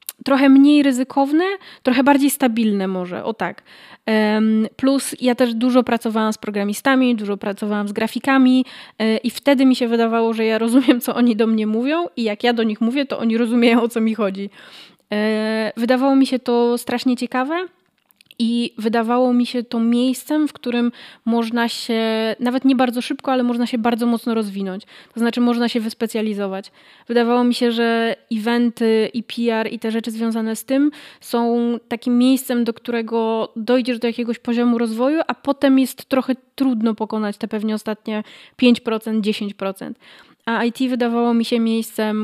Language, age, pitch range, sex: Polish, 20-39, 220-245 Hz, female